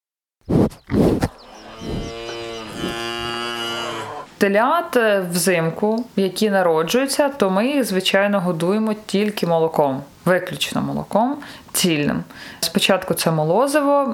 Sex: female